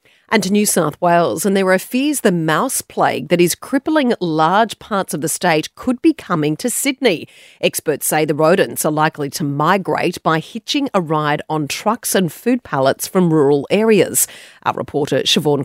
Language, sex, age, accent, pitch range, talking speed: English, female, 40-59, Australian, 170-220 Hz, 185 wpm